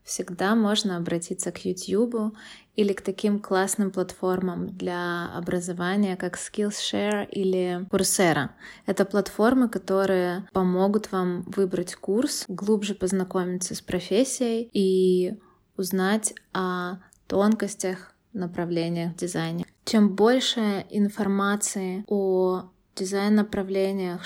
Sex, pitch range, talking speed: female, 180-210 Hz, 95 wpm